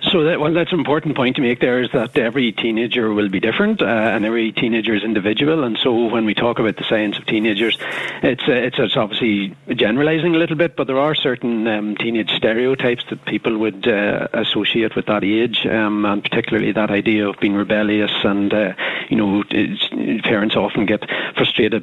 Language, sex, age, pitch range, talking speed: English, male, 40-59, 105-120 Hz, 200 wpm